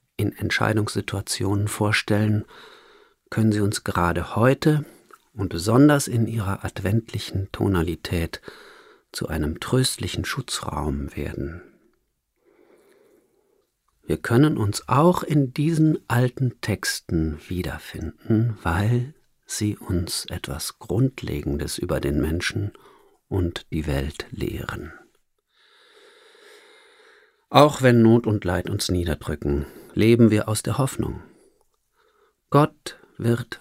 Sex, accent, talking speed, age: male, German, 95 wpm, 50-69